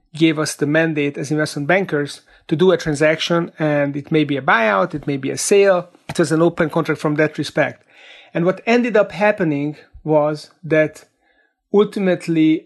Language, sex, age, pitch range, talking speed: English, male, 30-49, 150-175 Hz, 180 wpm